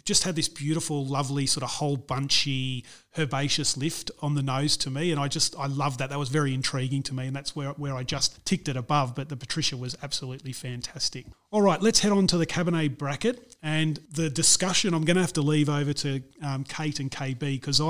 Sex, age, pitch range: male, 30-49, 140-160 Hz